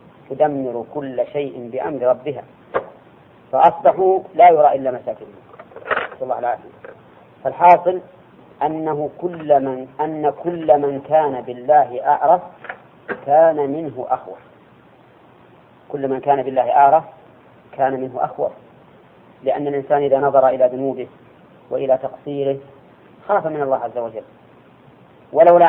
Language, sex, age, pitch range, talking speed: Arabic, female, 40-59, 130-150 Hz, 105 wpm